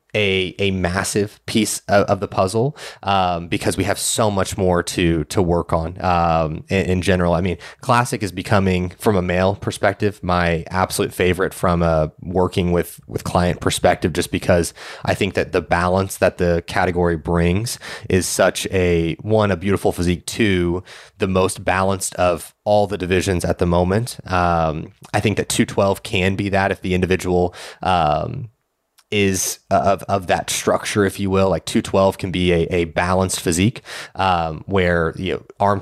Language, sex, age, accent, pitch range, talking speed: English, male, 30-49, American, 85-100 Hz, 175 wpm